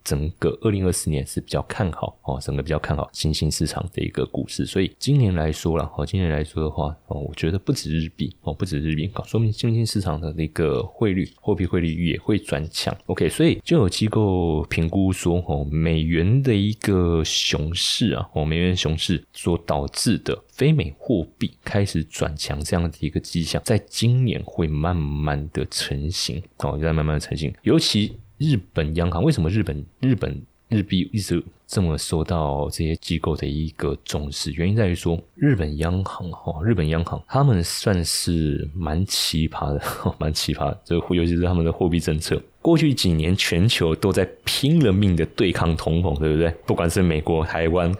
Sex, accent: male, native